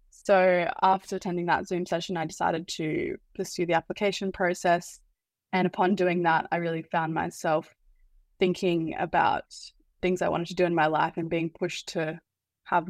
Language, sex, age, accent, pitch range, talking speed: English, female, 20-39, Australian, 165-180 Hz, 165 wpm